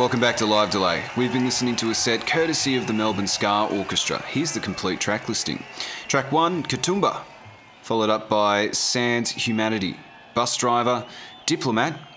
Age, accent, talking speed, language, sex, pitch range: 30-49, Australian, 165 wpm, English, male, 105-135 Hz